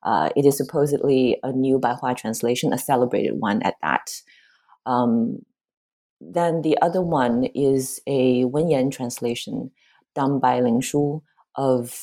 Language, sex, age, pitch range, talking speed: English, female, 30-49, 125-155 Hz, 130 wpm